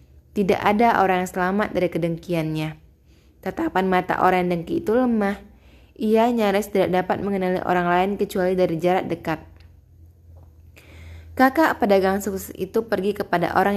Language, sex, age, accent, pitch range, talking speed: Indonesian, female, 20-39, native, 170-205 Hz, 140 wpm